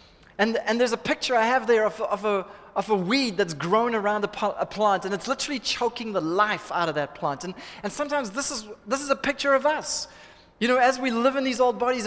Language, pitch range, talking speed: English, 175-235 Hz, 235 wpm